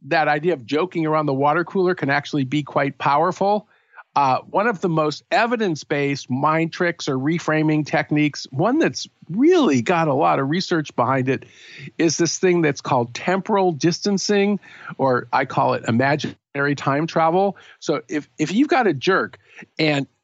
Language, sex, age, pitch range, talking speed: English, male, 50-69, 145-185 Hz, 165 wpm